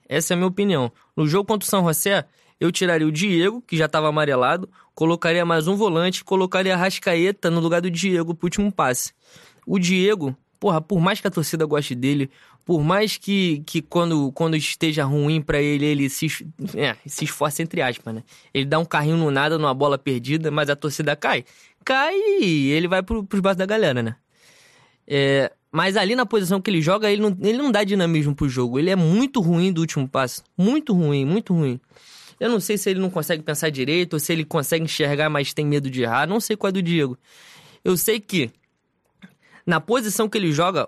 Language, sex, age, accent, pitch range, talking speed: Portuguese, male, 20-39, Brazilian, 150-190 Hz, 210 wpm